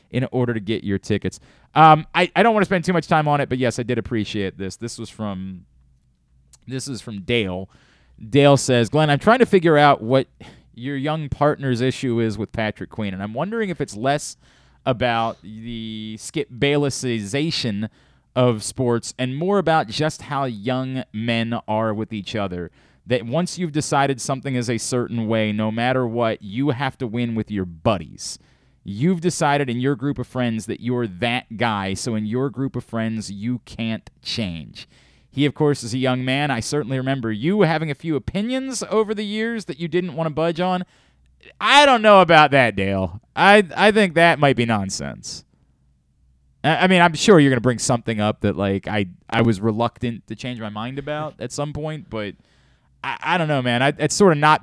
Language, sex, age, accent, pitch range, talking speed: English, male, 30-49, American, 110-150 Hz, 200 wpm